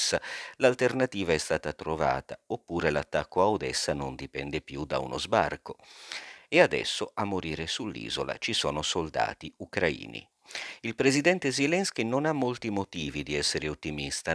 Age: 50-69